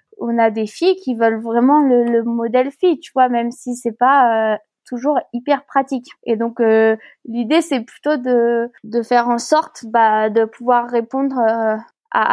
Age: 20-39